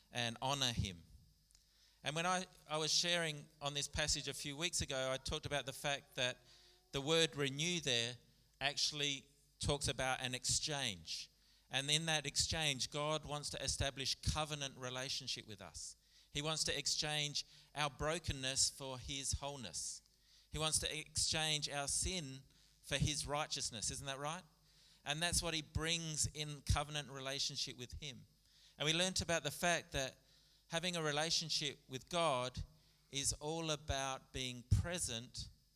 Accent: Australian